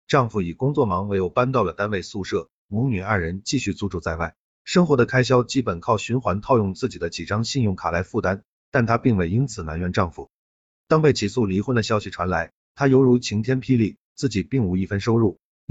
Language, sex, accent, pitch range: Chinese, male, native, 95-125 Hz